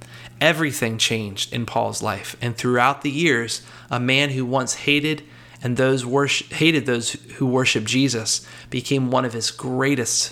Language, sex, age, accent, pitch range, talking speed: English, male, 30-49, American, 115-140 Hz, 155 wpm